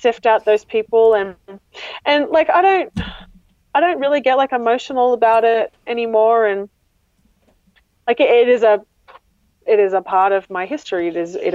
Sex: female